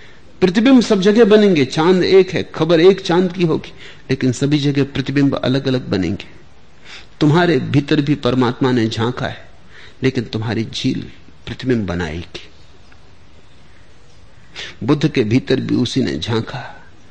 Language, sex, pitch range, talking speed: Hindi, male, 115-170 Hz, 135 wpm